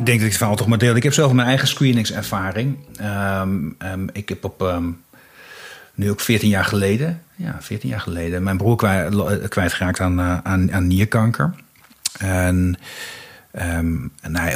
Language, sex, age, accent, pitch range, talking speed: Dutch, male, 40-59, Dutch, 90-110 Hz, 175 wpm